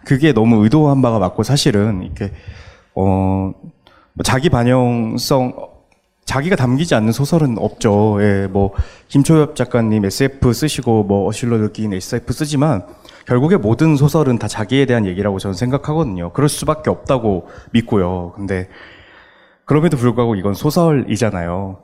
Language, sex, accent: Korean, male, native